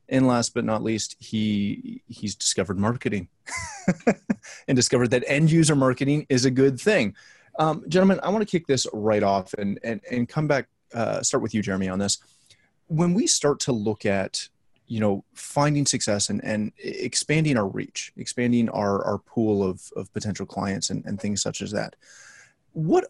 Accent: American